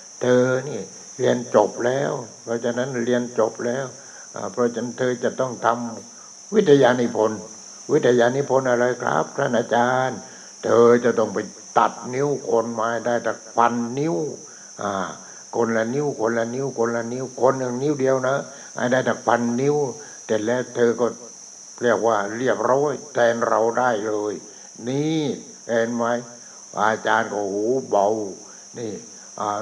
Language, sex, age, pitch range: English, male, 60-79, 115-125 Hz